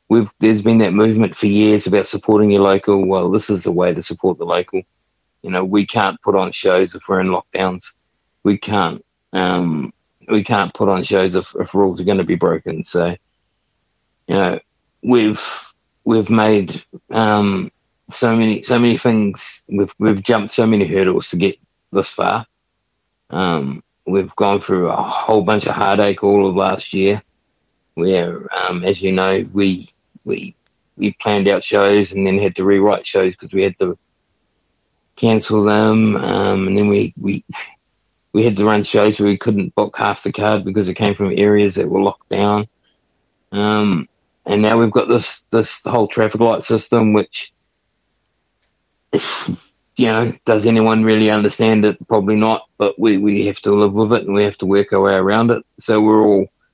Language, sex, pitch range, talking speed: English, male, 100-110 Hz, 185 wpm